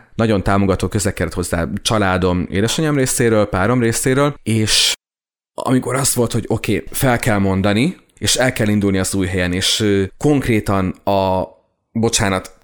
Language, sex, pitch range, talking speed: Hungarian, male, 95-120 Hz, 140 wpm